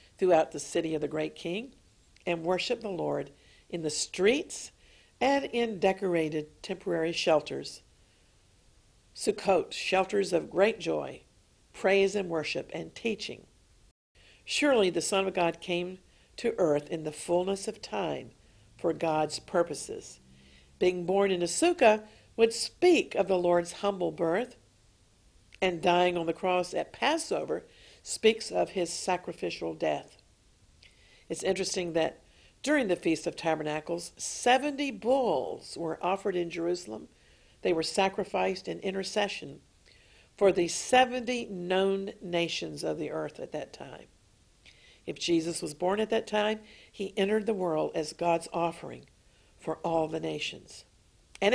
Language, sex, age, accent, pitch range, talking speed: English, female, 50-69, American, 165-210 Hz, 135 wpm